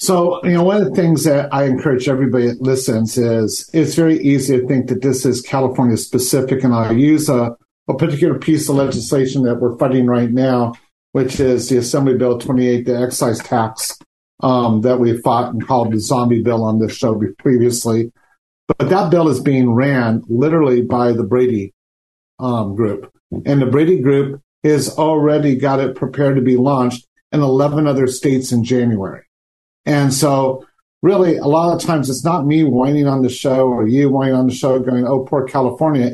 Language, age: English, 50-69